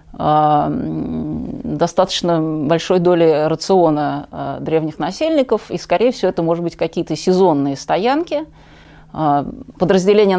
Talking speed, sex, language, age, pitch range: 90 wpm, female, Russian, 30-49, 155-190 Hz